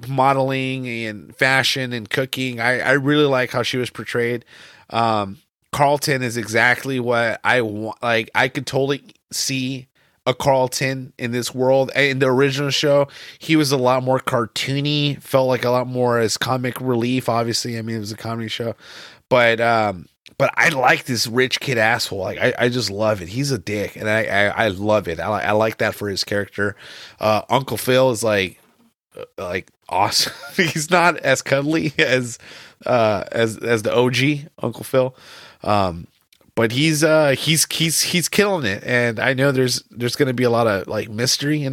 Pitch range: 110-135 Hz